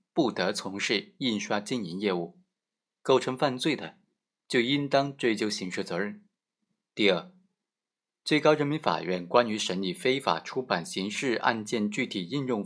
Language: Chinese